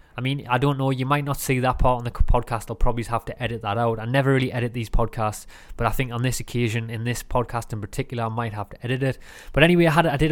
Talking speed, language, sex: 290 wpm, English, male